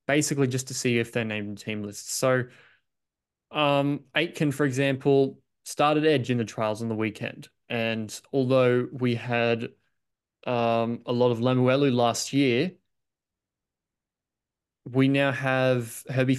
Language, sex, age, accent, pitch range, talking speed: English, male, 20-39, Australian, 115-135 Hz, 140 wpm